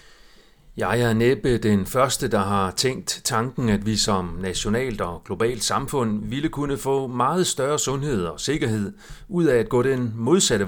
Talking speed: 170 wpm